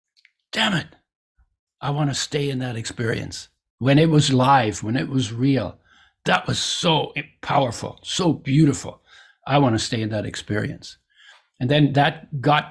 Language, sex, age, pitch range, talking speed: English, male, 60-79, 125-160 Hz, 160 wpm